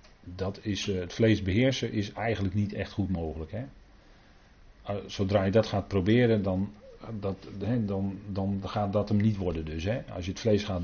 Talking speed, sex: 185 wpm, male